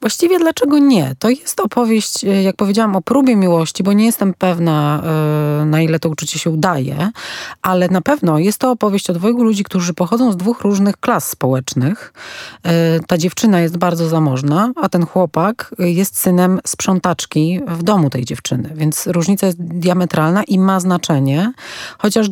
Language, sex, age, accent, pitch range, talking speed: Polish, female, 30-49, native, 170-200 Hz, 160 wpm